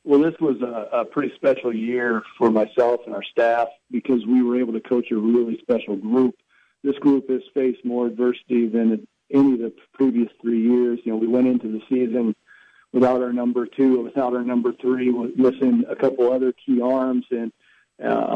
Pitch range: 120-140 Hz